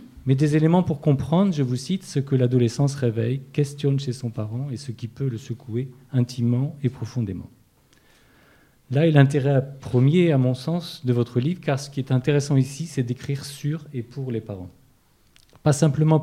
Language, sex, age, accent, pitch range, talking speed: French, male, 40-59, French, 125-145 Hz, 185 wpm